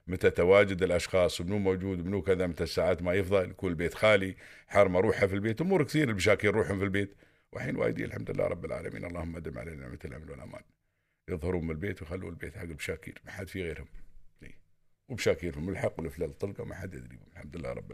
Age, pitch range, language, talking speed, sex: 50-69, 85-115 Hz, Arabic, 190 wpm, male